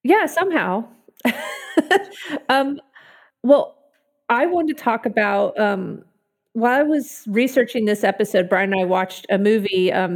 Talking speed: 135 wpm